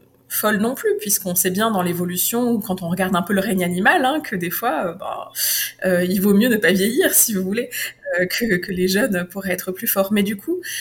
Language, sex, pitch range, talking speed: French, female, 185-230 Hz, 245 wpm